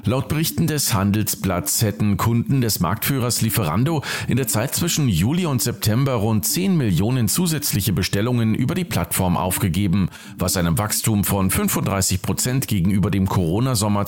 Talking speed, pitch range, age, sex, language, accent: 140 wpm, 100-140 Hz, 50-69, male, German, German